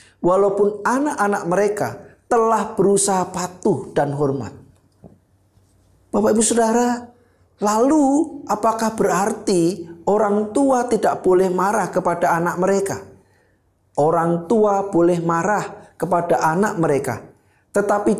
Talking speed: 100 wpm